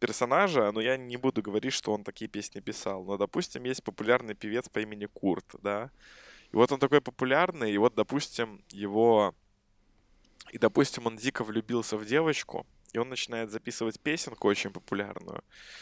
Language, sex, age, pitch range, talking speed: Russian, male, 20-39, 105-125 Hz, 165 wpm